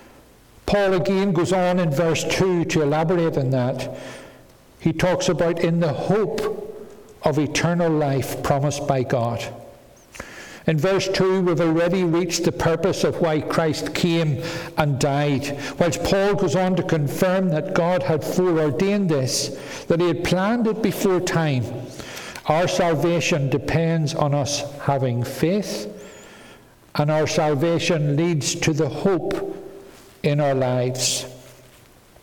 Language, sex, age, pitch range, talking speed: English, male, 60-79, 140-185 Hz, 135 wpm